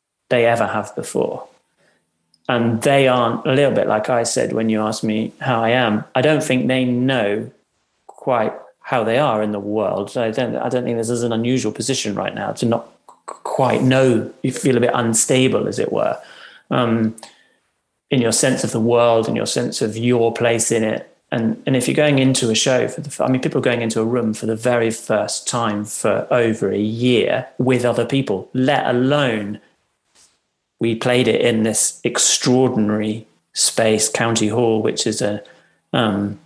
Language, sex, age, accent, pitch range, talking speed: German, male, 30-49, British, 110-125 Hz, 190 wpm